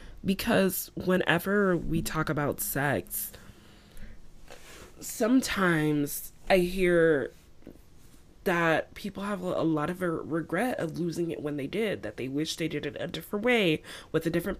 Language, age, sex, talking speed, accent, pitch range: English, 20-39, female, 140 wpm, American, 155-185 Hz